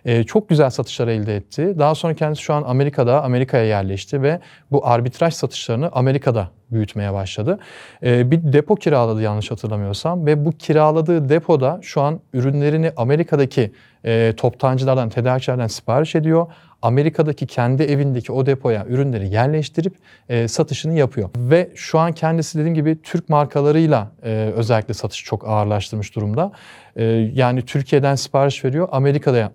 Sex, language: male, Turkish